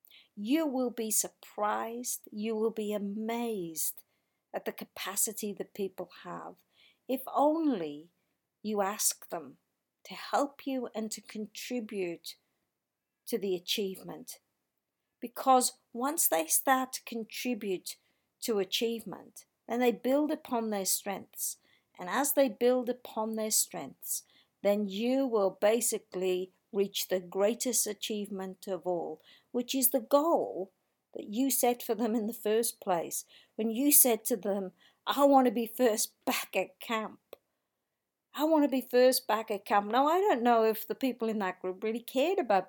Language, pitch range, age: English, 195-250 Hz, 50-69